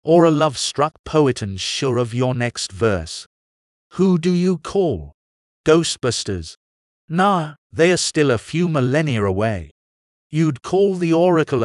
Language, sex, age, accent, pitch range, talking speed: English, male, 50-69, British, 95-165 Hz, 145 wpm